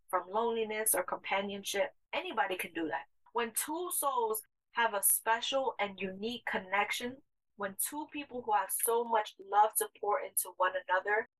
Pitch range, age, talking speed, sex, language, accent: 190-245 Hz, 20-39, 160 wpm, female, English, American